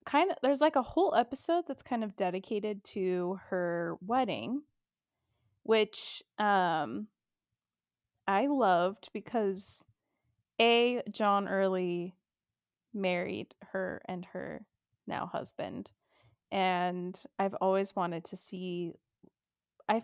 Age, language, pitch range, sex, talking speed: 20-39, English, 185-250 Hz, female, 105 wpm